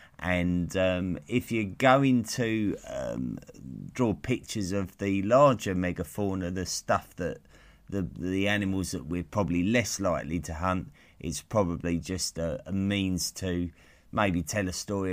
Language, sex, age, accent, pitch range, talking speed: English, male, 30-49, British, 85-105 Hz, 145 wpm